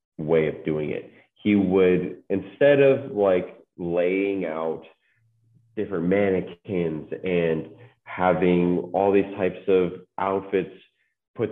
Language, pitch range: English, 80-100 Hz